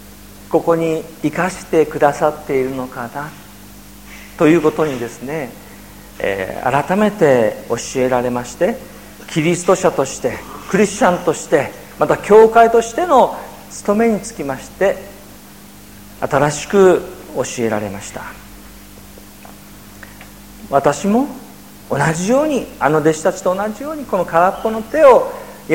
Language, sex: Japanese, male